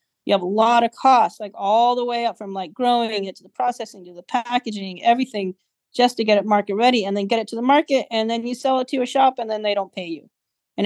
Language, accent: English, American